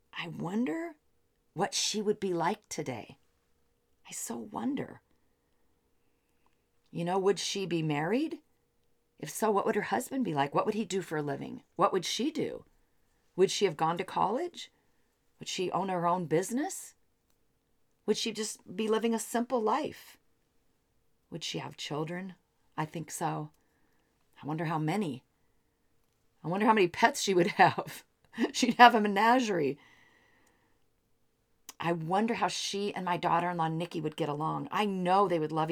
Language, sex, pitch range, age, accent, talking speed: English, female, 155-215 Hz, 40-59, American, 165 wpm